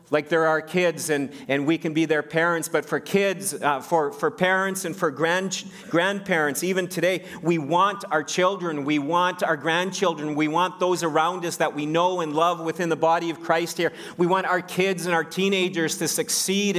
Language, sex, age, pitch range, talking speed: English, male, 40-59, 165-185 Hz, 205 wpm